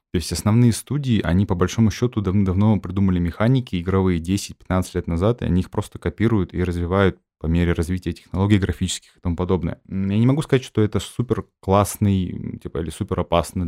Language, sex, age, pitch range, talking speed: Russian, male, 20-39, 90-110 Hz, 175 wpm